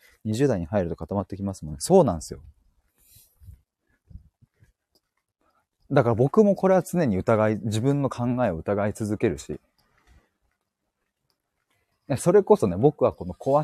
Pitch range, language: 100-150 Hz, Japanese